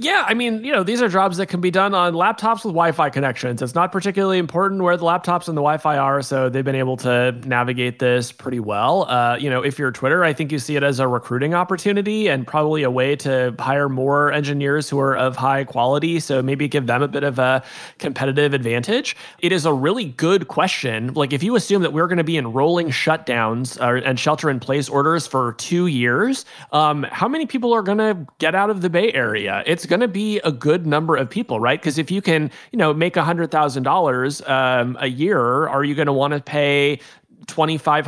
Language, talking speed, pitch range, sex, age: English, 225 wpm, 135-170 Hz, male, 30-49